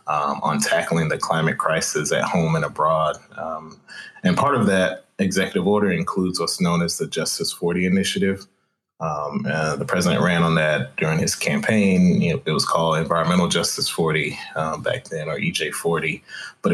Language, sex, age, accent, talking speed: English, male, 30-49, American, 175 wpm